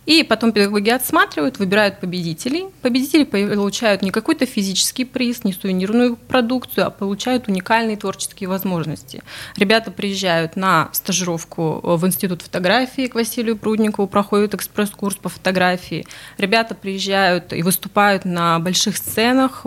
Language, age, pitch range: Russian, 20-39, 180-225 Hz